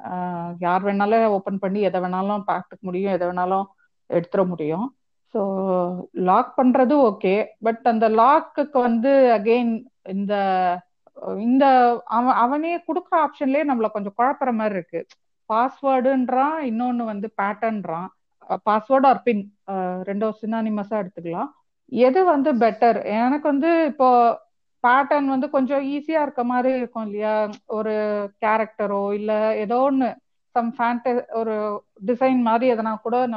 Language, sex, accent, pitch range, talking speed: Tamil, female, native, 205-260 Hz, 65 wpm